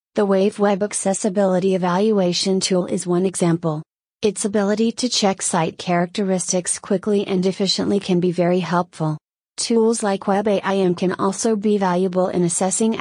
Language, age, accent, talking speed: English, 30-49, American, 145 wpm